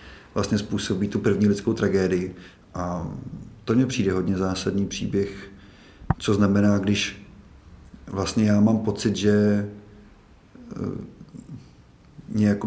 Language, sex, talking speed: Czech, male, 105 wpm